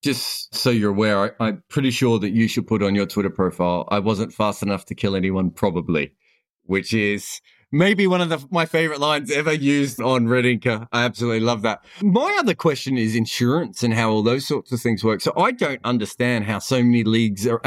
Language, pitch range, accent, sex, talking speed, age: English, 110-140 Hz, Australian, male, 210 wpm, 30-49